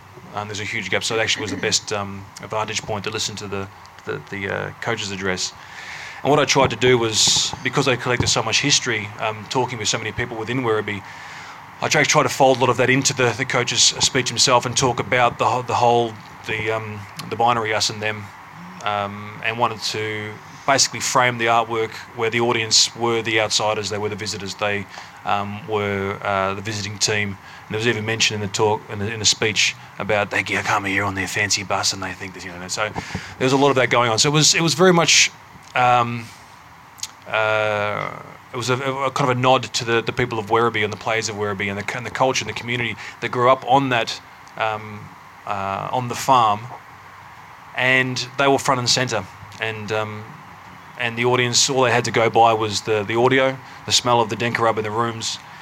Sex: male